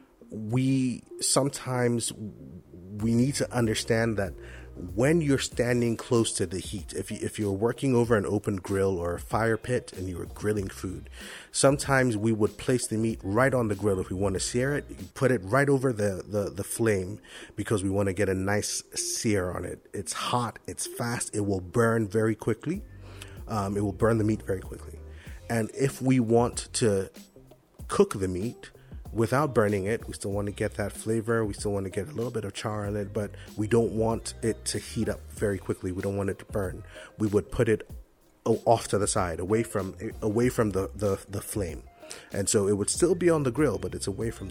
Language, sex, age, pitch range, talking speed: English, male, 30-49, 100-120 Hz, 215 wpm